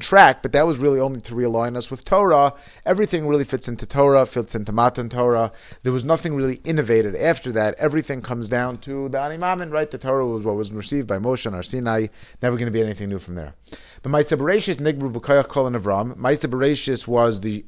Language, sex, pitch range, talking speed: English, male, 115-145 Hz, 195 wpm